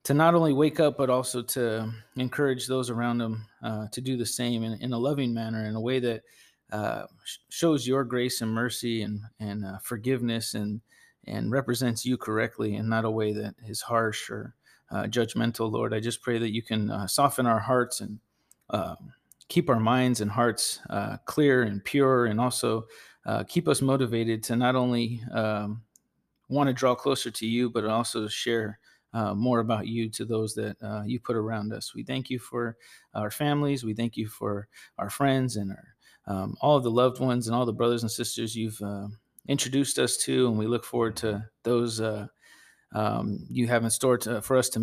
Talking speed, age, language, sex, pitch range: 205 wpm, 30-49, English, male, 110-125 Hz